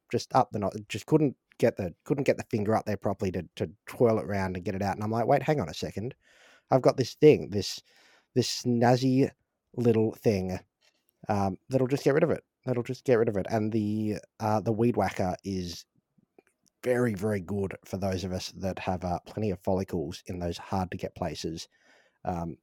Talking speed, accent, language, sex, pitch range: 215 wpm, Australian, English, male, 95-115 Hz